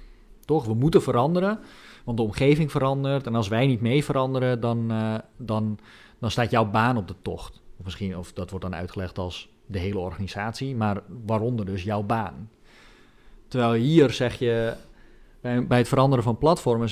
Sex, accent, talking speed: male, Dutch, 175 wpm